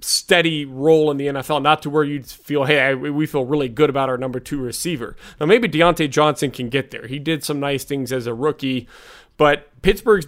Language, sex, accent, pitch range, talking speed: English, male, American, 145-170 Hz, 220 wpm